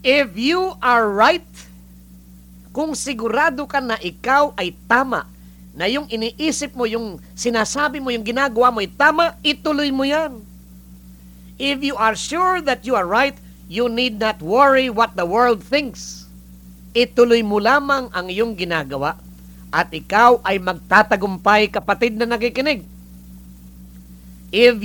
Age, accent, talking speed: 50-69, Filipino, 135 wpm